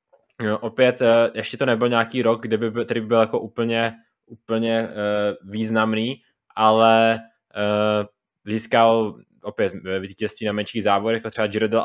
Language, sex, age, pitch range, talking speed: Czech, male, 20-39, 105-115 Hz, 140 wpm